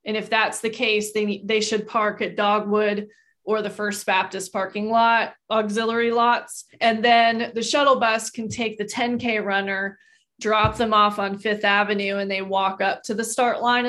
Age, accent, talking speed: 20-39, American, 185 wpm